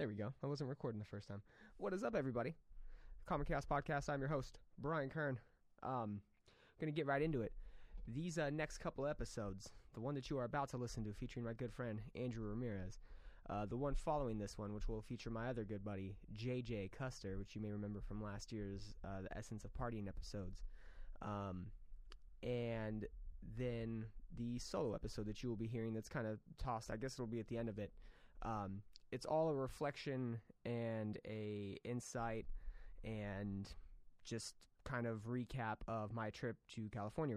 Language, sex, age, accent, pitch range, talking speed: English, male, 20-39, American, 105-125 Hz, 190 wpm